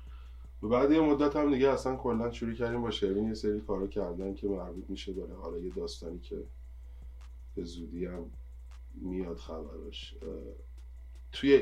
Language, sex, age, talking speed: Persian, male, 20-39, 155 wpm